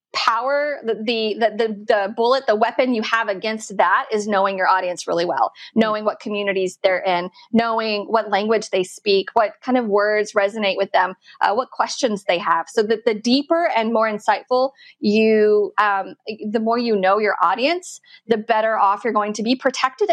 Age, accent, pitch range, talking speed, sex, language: 30-49, American, 200-235 Hz, 190 wpm, female, English